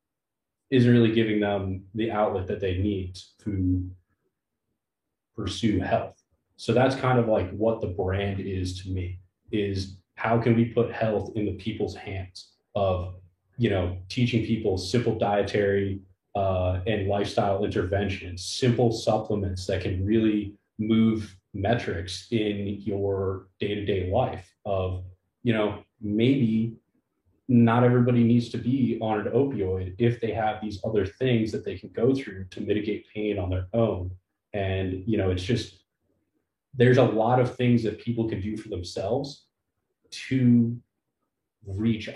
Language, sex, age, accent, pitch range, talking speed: English, male, 30-49, American, 95-110 Hz, 145 wpm